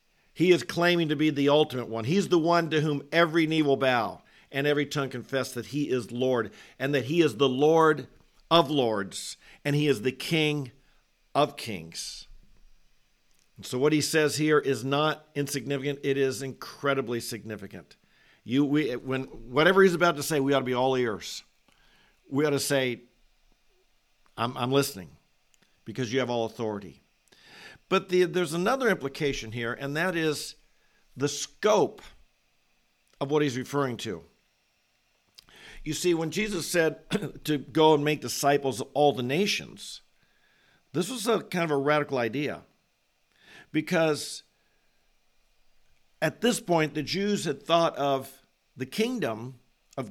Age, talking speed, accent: 50-69, 155 wpm, American